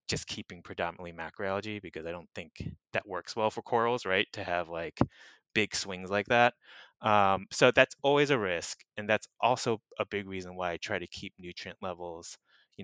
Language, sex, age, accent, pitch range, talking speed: English, male, 20-39, American, 90-105 Hz, 190 wpm